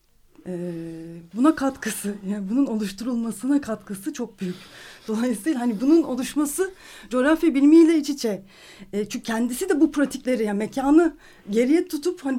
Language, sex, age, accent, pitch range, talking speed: Turkish, female, 40-59, native, 200-280 Hz, 135 wpm